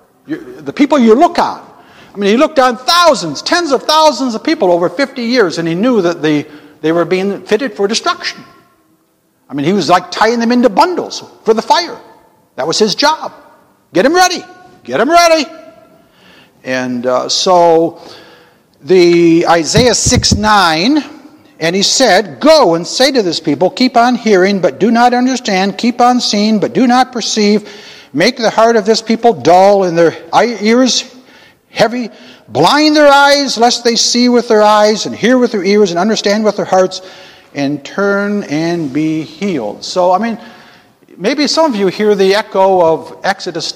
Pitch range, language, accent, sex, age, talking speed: 175-250 Hz, English, American, male, 60-79, 180 wpm